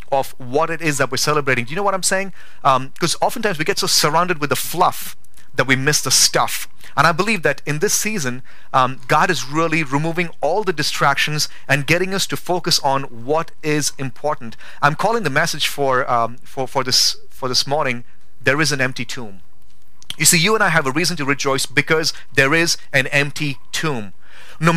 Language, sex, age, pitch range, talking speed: English, male, 30-49, 140-190 Hz, 210 wpm